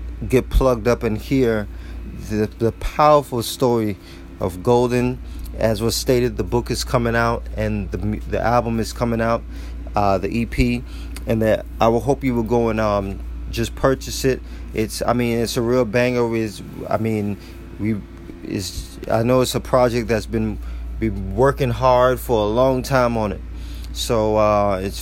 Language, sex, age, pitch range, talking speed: English, male, 20-39, 95-120 Hz, 175 wpm